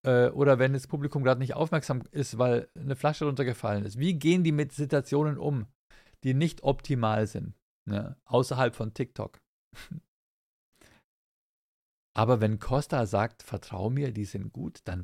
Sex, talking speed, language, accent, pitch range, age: male, 150 wpm, German, German, 110-140 Hz, 50-69